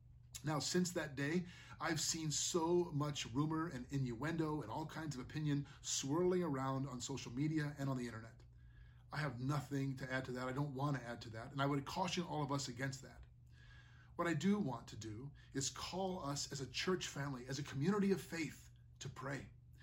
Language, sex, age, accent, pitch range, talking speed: English, male, 30-49, American, 130-165 Hz, 205 wpm